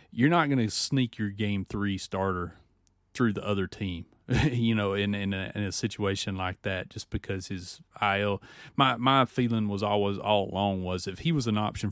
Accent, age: American, 30-49